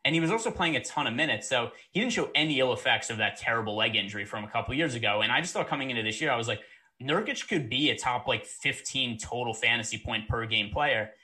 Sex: male